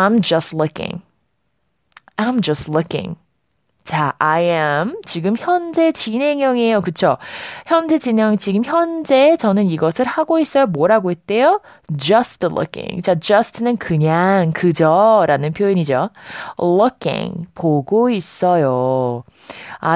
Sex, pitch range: female, 150-245 Hz